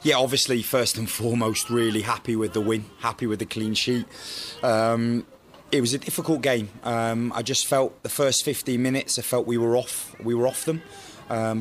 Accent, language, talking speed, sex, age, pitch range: British, English, 200 wpm, male, 20-39, 115-130 Hz